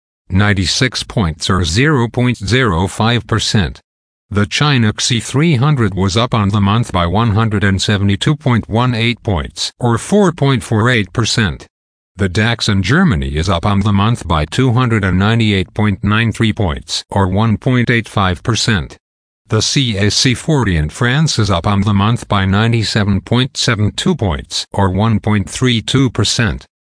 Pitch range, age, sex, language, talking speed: 100-120 Hz, 50-69, male, English, 100 wpm